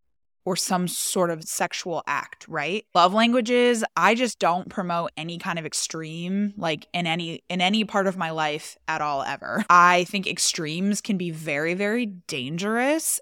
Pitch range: 160-195 Hz